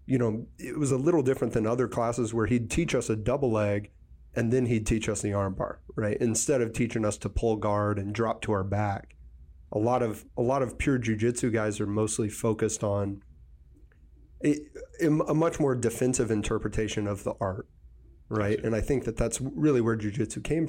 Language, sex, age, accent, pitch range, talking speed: English, male, 30-49, American, 100-120 Hz, 205 wpm